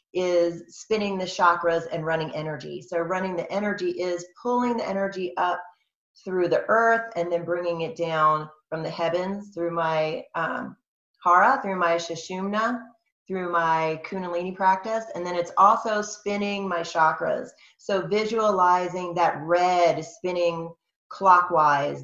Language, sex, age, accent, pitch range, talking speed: English, female, 30-49, American, 160-190 Hz, 140 wpm